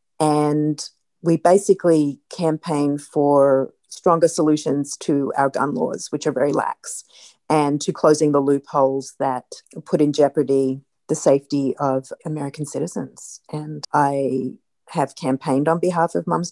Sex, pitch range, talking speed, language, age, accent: female, 140-175 Hz, 135 wpm, English, 40-59, Australian